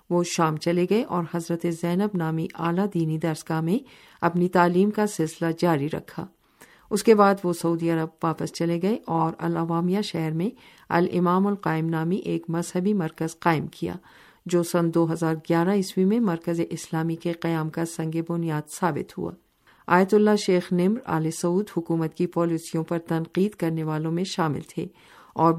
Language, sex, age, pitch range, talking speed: Urdu, female, 50-69, 165-185 Hz, 170 wpm